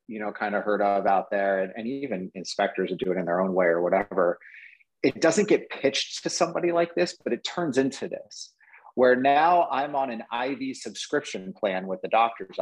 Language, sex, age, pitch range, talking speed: English, male, 30-49, 105-140 Hz, 215 wpm